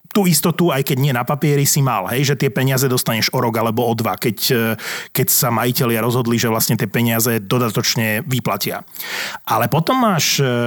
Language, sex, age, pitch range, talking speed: Slovak, male, 30-49, 125-160 Hz, 185 wpm